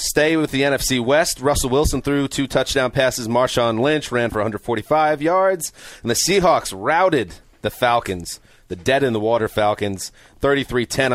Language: English